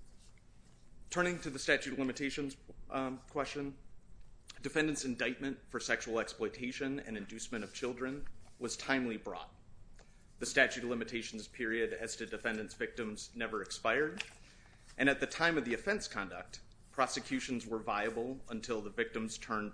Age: 30-49